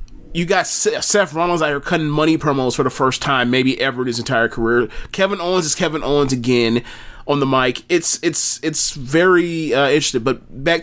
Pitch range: 120-170 Hz